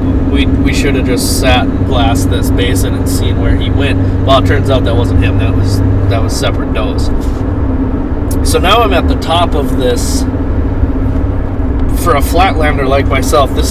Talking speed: 185 wpm